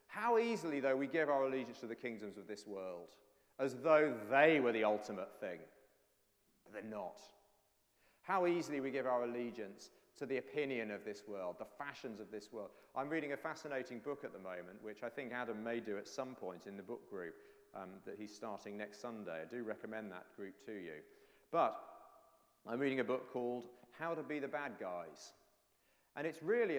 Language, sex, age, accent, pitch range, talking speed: English, male, 40-59, British, 115-155 Hz, 200 wpm